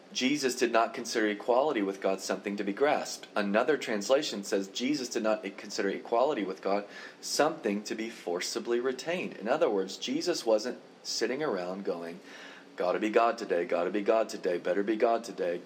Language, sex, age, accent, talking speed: English, male, 40-59, American, 175 wpm